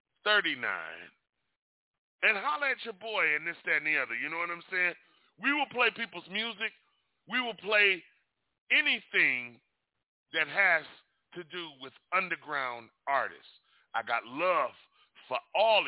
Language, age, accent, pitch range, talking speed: English, 40-59, American, 170-255 Hz, 145 wpm